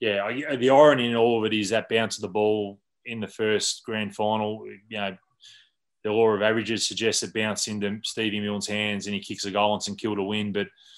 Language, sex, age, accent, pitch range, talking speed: English, male, 20-39, Australian, 100-110 Hz, 230 wpm